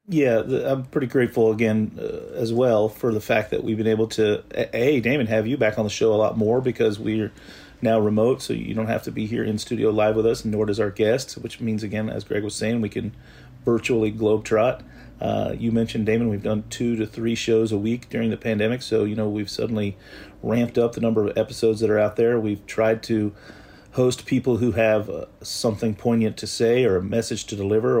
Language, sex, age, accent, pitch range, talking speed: English, male, 40-59, American, 110-115 Hz, 225 wpm